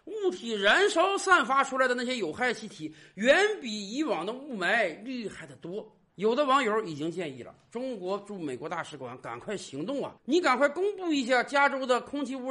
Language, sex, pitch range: Chinese, male, 180-295 Hz